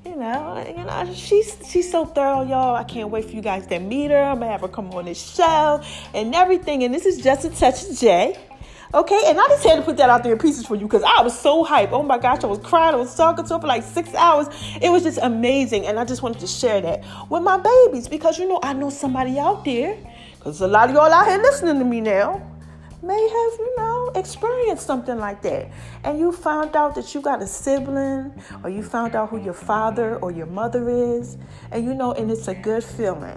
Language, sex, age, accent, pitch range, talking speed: English, female, 30-49, American, 235-370 Hz, 250 wpm